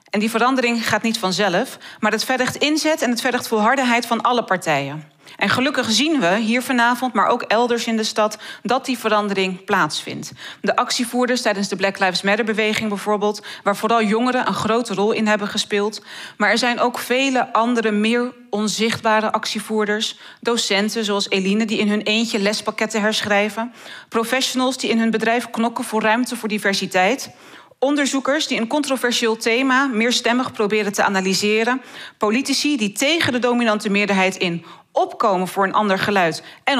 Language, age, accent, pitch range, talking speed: Dutch, 40-59, Dutch, 195-245 Hz, 165 wpm